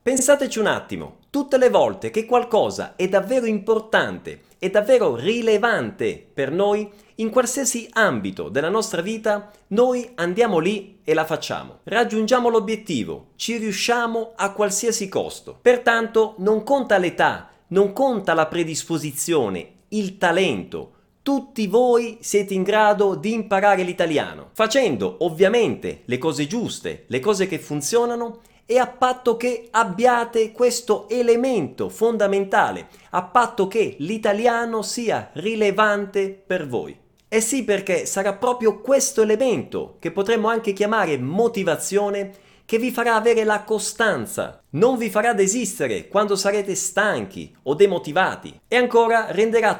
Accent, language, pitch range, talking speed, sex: native, Italian, 200-235 Hz, 130 wpm, male